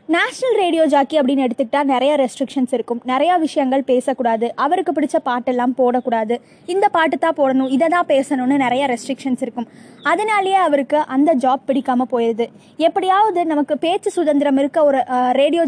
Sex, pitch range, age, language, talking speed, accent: female, 255-325 Hz, 20-39, Tamil, 145 wpm, native